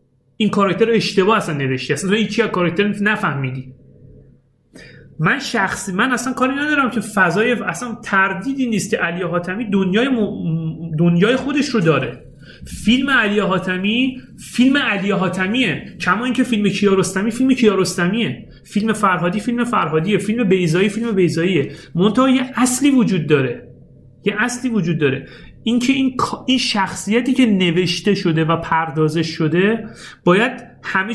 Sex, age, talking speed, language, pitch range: male, 30-49, 135 wpm, Persian, 175-235 Hz